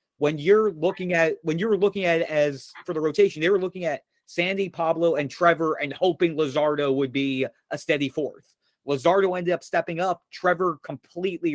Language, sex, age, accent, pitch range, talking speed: English, male, 30-49, American, 145-175 Hz, 195 wpm